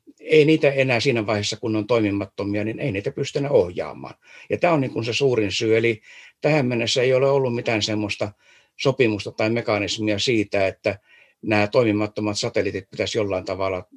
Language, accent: Finnish, native